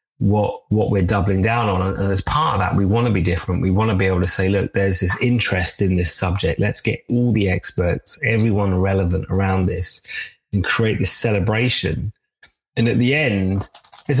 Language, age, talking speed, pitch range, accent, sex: English, 30-49, 205 wpm, 95-115 Hz, British, male